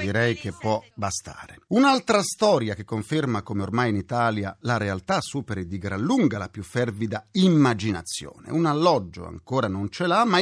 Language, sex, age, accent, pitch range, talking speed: Italian, male, 40-59, native, 105-170 Hz, 165 wpm